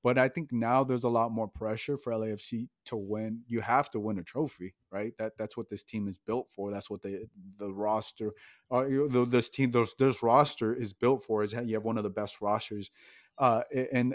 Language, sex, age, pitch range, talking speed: English, male, 30-49, 105-125 Hz, 230 wpm